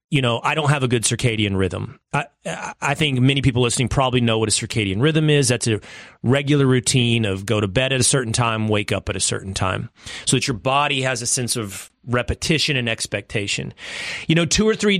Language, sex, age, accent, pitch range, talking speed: English, male, 30-49, American, 115-150 Hz, 225 wpm